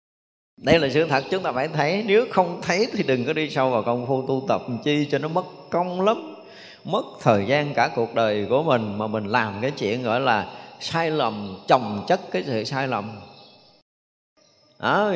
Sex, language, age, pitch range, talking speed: male, Vietnamese, 20-39, 125-175 Hz, 200 wpm